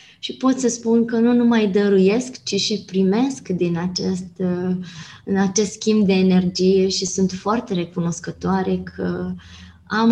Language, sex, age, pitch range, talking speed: Romanian, female, 20-39, 180-220 Hz, 135 wpm